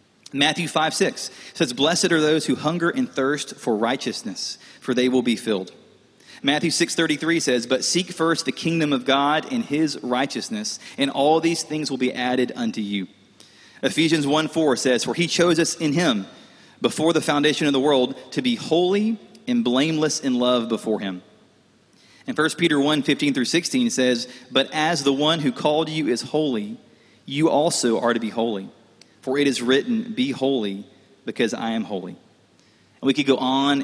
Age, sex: 30-49, male